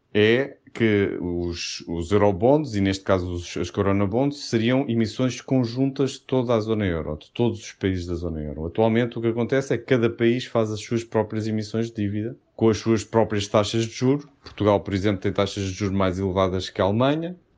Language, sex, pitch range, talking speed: Portuguese, male, 95-120 Hz, 210 wpm